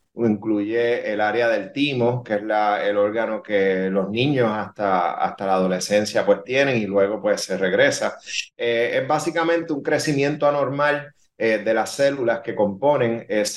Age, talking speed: 30-49, 145 wpm